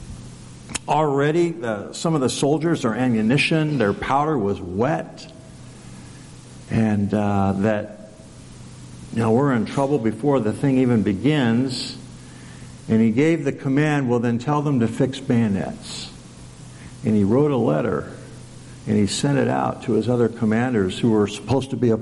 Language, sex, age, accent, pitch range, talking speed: English, male, 50-69, American, 110-135 Hz, 155 wpm